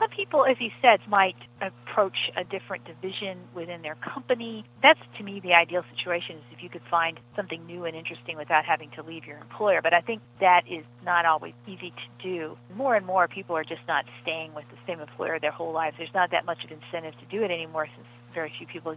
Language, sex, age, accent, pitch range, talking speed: English, female, 40-59, American, 160-190 Hz, 230 wpm